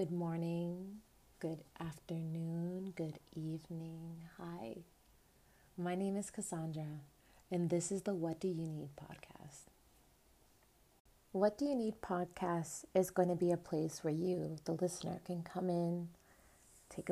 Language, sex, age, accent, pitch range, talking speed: English, female, 30-49, American, 165-185 Hz, 135 wpm